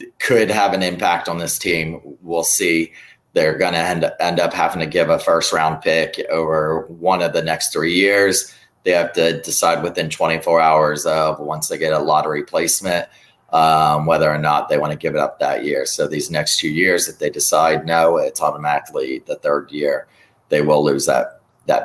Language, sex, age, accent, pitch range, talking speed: English, male, 30-49, American, 80-100 Hz, 200 wpm